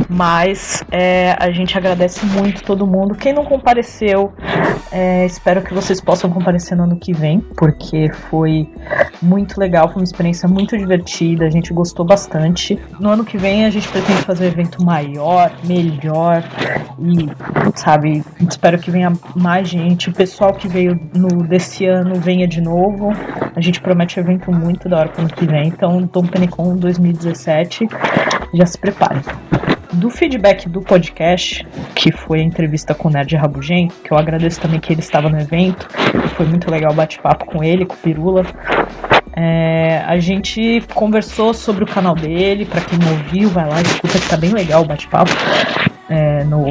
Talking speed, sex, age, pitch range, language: 175 wpm, female, 20-39, 165-190 Hz, Portuguese